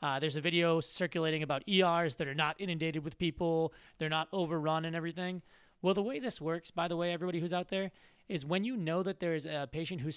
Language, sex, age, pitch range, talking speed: English, male, 20-39, 150-180 Hz, 235 wpm